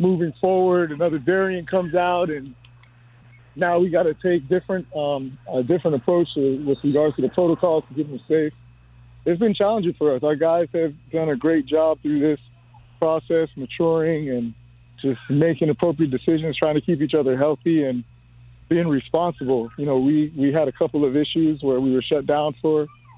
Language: English